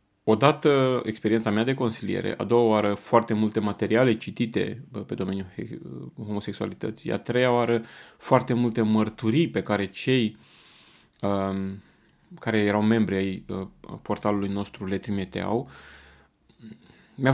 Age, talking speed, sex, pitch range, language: 30-49, 120 wpm, male, 100-115 Hz, Romanian